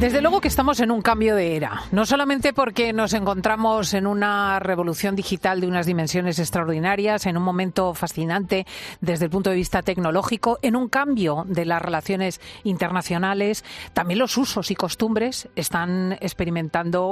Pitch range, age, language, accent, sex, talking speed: 155-200 Hz, 40-59, Spanish, Spanish, female, 160 wpm